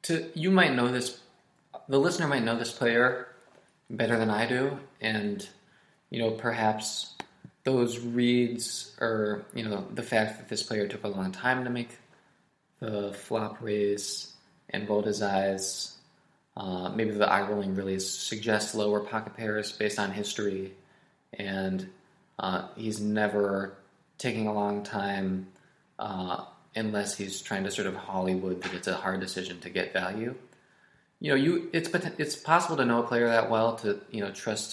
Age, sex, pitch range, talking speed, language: 20-39, male, 105-130 Hz, 165 wpm, English